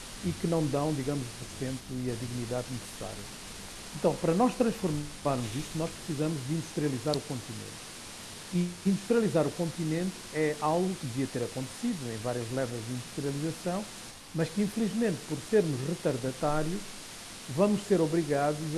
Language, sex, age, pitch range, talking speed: Portuguese, male, 50-69, 140-165 Hz, 145 wpm